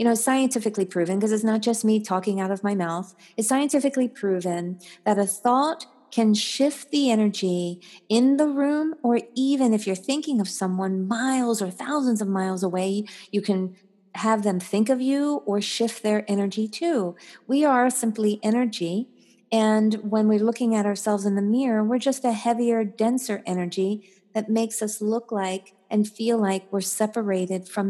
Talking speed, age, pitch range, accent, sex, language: 175 wpm, 40-59, 190-235 Hz, American, female, English